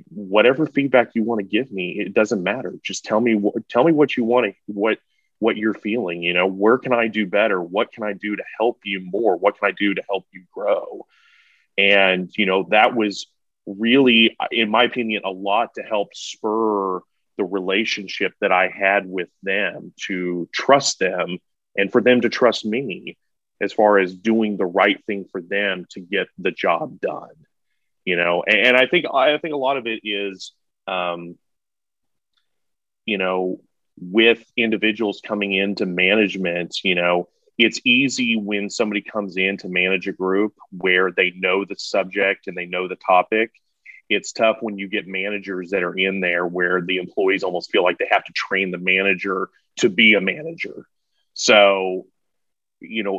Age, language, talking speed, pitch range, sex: 30-49, English, 185 wpm, 95-115 Hz, male